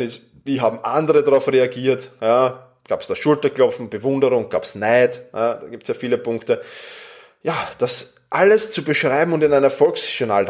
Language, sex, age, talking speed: German, male, 20-39, 170 wpm